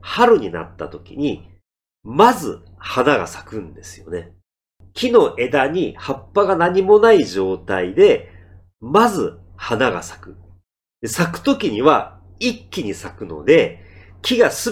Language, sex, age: Japanese, male, 40-59